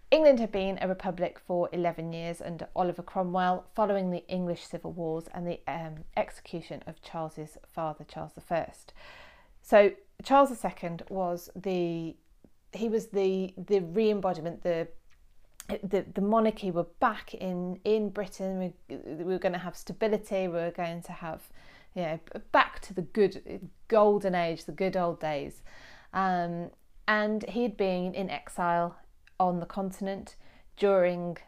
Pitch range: 170-195 Hz